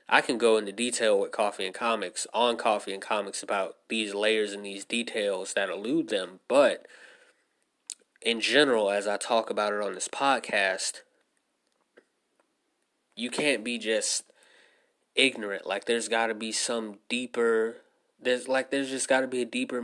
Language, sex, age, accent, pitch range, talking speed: English, male, 20-39, American, 110-125 Hz, 165 wpm